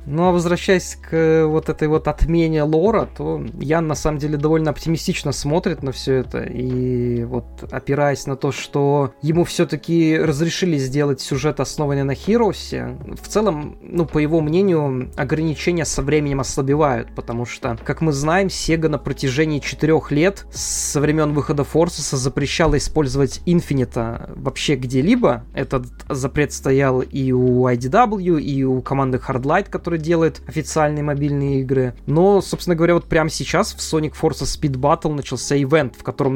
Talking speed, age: 155 wpm, 20-39